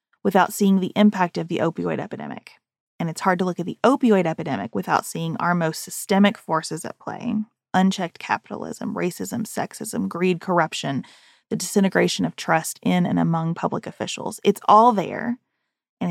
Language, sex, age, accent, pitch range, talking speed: English, female, 20-39, American, 175-225 Hz, 165 wpm